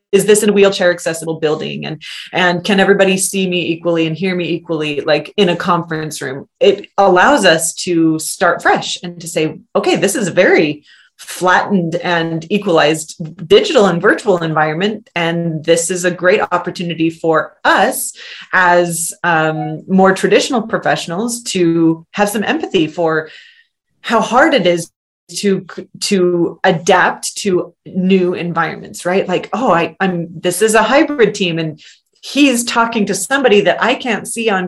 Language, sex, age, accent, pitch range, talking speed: English, female, 30-49, American, 170-205 Hz, 160 wpm